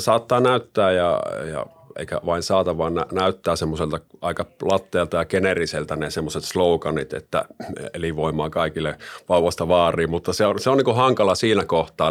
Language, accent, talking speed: Finnish, native, 165 wpm